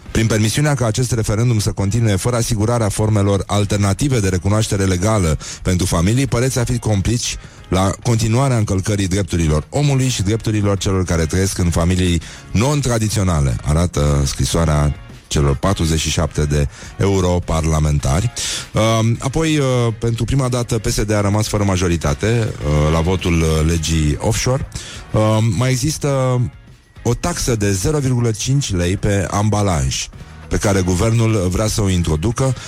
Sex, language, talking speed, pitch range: male, Romanian, 125 wpm, 85-110 Hz